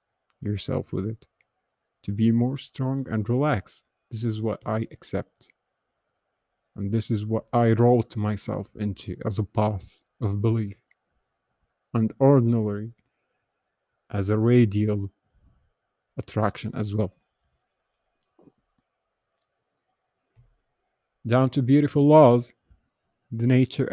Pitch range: 105-120 Hz